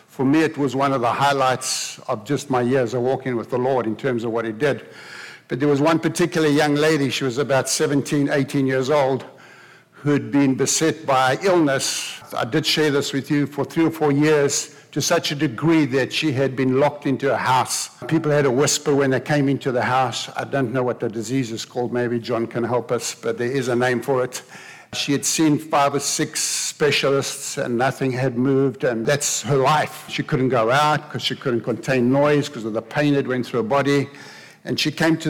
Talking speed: 225 wpm